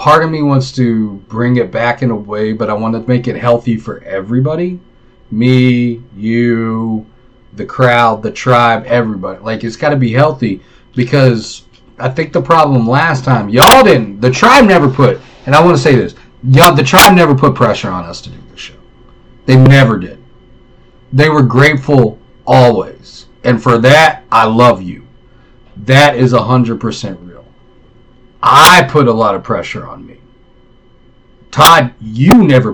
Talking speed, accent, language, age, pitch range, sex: 170 wpm, American, English, 40-59, 115-135 Hz, male